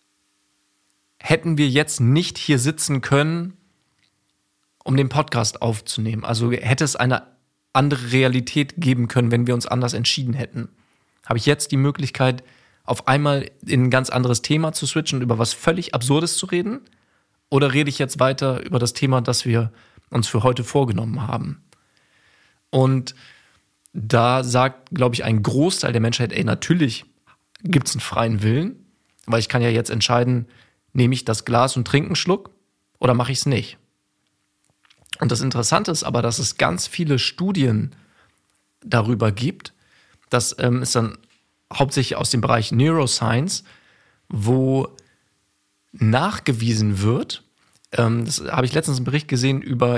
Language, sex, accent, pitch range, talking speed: German, male, German, 115-140 Hz, 155 wpm